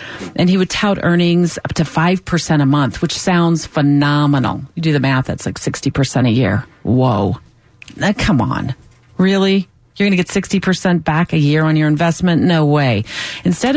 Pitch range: 145-200 Hz